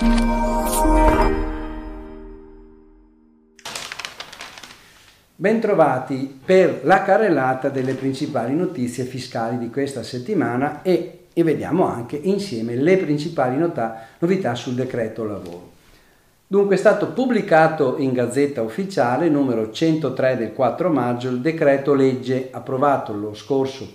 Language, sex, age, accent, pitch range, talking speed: Italian, male, 50-69, native, 115-155 Hz, 100 wpm